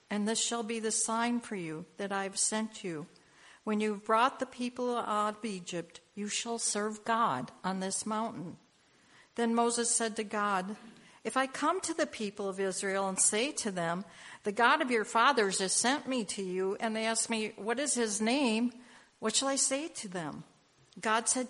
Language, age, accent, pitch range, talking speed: English, 60-79, American, 190-225 Hz, 200 wpm